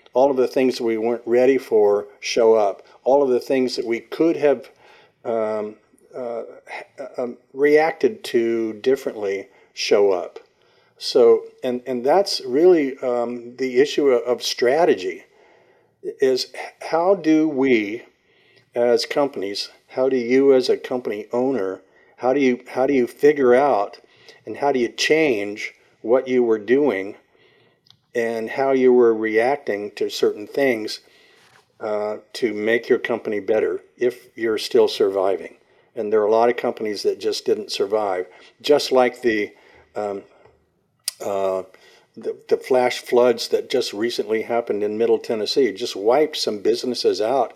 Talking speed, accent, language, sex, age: 150 wpm, American, English, male, 50-69